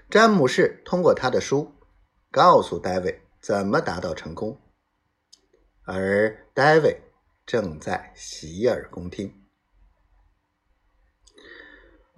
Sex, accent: male, native